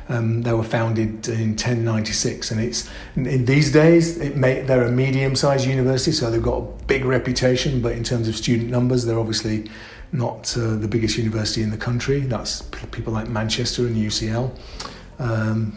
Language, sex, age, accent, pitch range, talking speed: English, male, 40-59, British, 110-130 Hz, 180 wpm